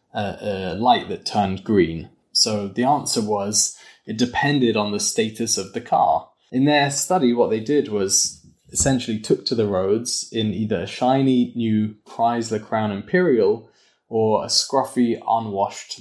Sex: male